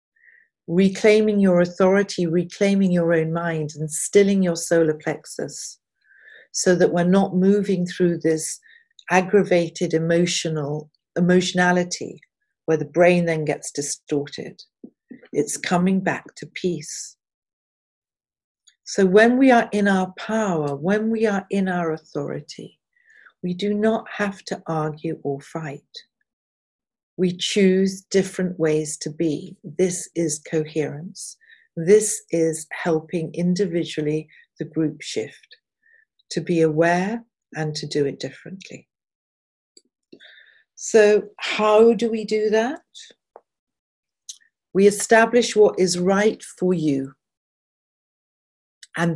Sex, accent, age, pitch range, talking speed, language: female, British, 50-69, 160-205 Hz, 110 wpm, English